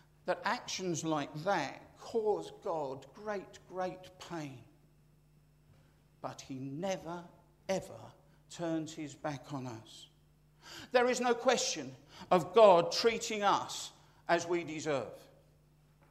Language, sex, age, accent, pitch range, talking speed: English, male, 50-69, British, 150-205 Hz, 110 wpm